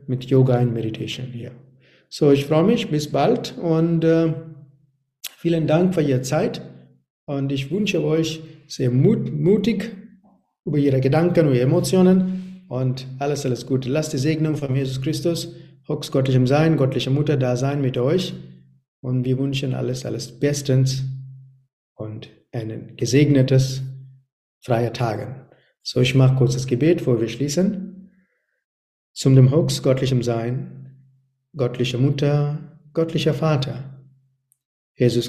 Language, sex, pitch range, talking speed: German, male, 125-150 Hz, 130 wpm